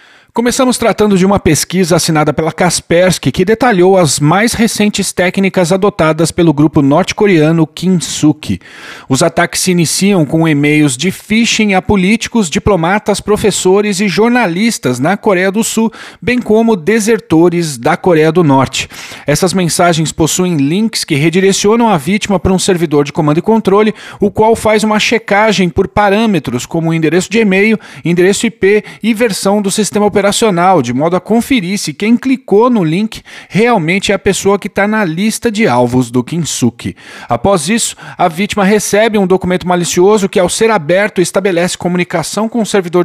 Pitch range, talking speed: 170-210 Hz, 160 wpm